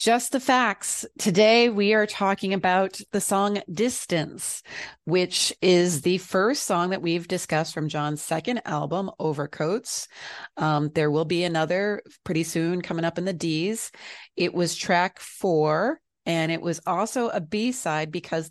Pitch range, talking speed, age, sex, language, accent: 160-200 Hz, 150 wpm, 30-49, female, English, American